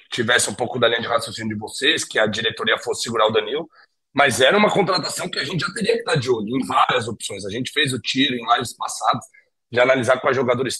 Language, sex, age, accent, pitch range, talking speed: Portuguese, male, 40-59, Brazilian, 125-190 Hz, 245 wpm